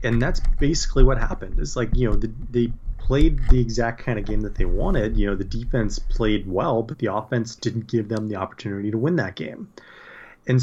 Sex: male